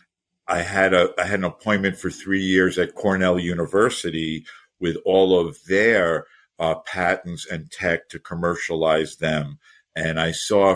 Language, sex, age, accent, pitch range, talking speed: English, male, 50-69, American, 85-100 Hz, 150 wpm